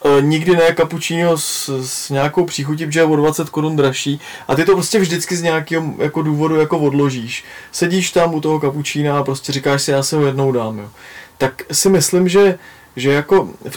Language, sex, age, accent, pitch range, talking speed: Czech, male, 20-39, native, 135-165 Hz, 200 wpm